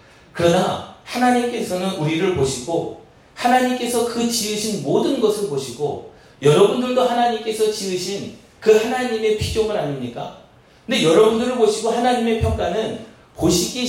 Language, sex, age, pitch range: Korean, male, 40-59, 180-245 Hz